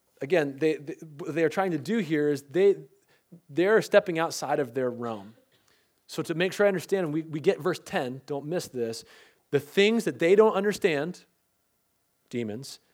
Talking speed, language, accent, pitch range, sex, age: 175 wpm, English, American, 120-165 Hz, male, 30-49